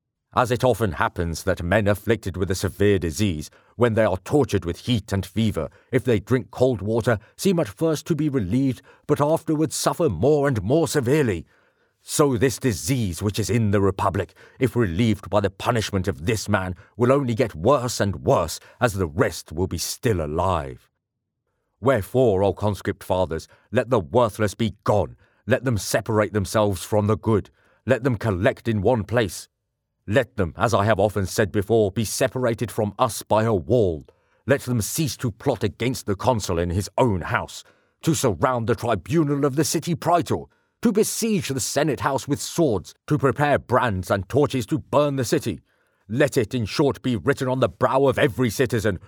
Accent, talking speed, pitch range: British, 185 wpm, 100-130 Hz